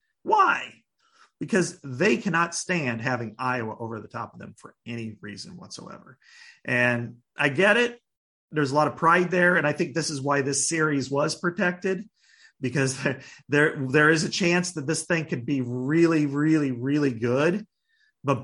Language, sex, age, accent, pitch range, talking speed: English, male, 40-59, American, 130-180 Hz, 175 wpm